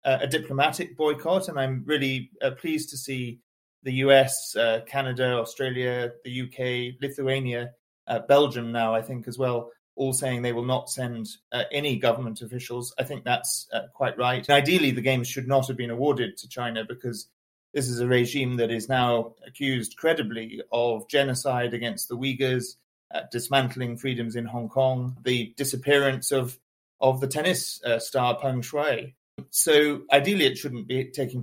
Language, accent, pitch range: English, British, 120-140 Hz